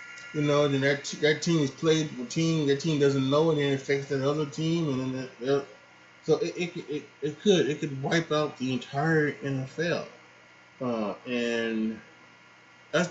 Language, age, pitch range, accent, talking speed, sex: English, 20-39, 115-145 Hz, American, 180 wpm, male